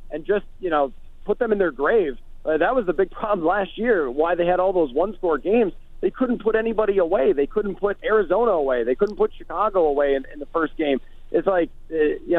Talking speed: 235 wpm